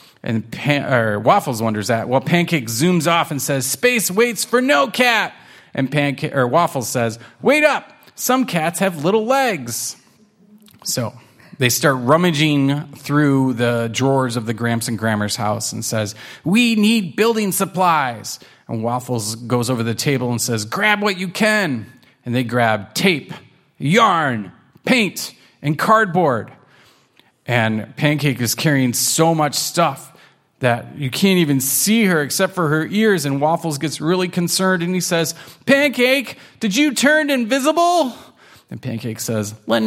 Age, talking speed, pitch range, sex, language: 30-49, 155 wpm, 130-200 Hz, male, English